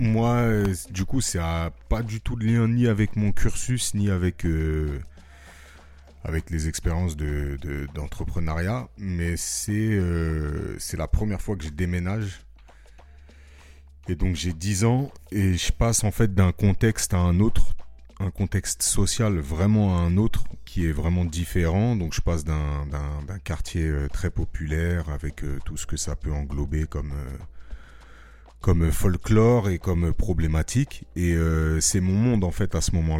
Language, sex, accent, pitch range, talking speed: French, male, French, 80-100 Hz, 160 wpm